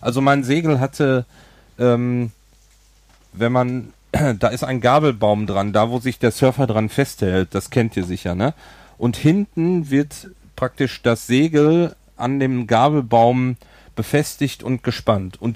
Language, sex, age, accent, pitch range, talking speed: German, male, 40-59, German, 115-150 Hz, 145 wpm